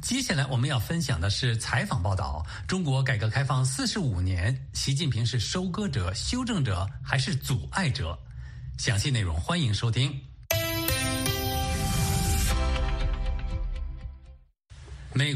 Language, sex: Chinese, male